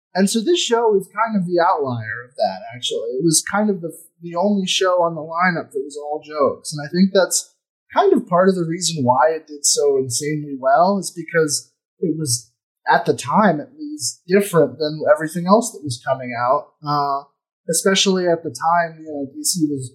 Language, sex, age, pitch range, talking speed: English, male, 20-39, 145-190 Hz, 210 wpm